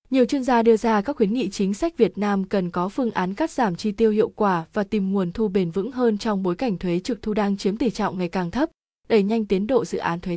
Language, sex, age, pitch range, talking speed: Vietnamese, female, 20-39, 190-230 Hz, 285 wpm